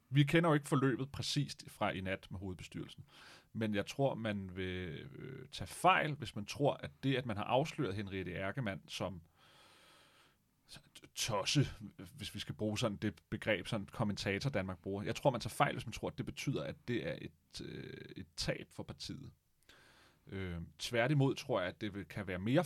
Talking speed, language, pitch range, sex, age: 185 wpm, Danish, 100-135 Hz, male, 30-49